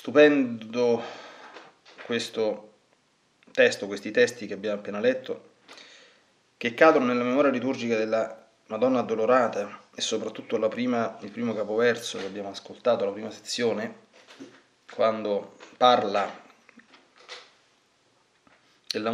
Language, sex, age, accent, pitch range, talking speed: Italian, male, 30-49, native, 105-120 Hz, 105 wpm